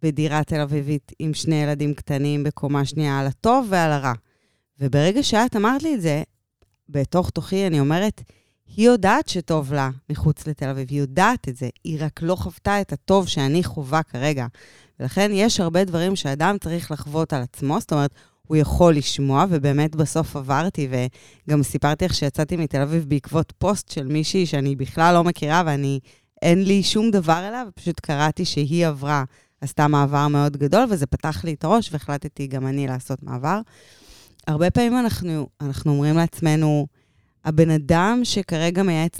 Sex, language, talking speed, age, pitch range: female, Hebrew, 160 wpm, 20-39, 140-170 Hz